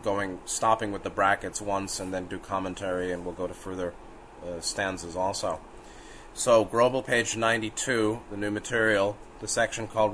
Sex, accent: male, American